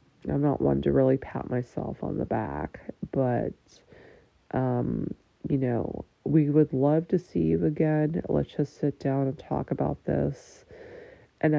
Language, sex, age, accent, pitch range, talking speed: English, female, 30-49, American, 130-180 Hz, 155 wpm